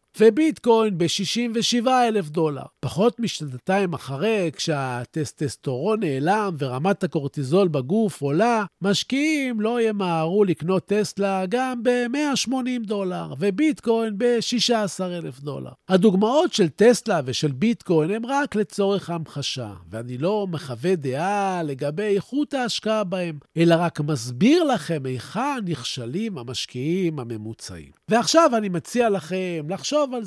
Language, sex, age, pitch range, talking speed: Hebrew, male, 50-69, 150-220 Hz, 105 wpm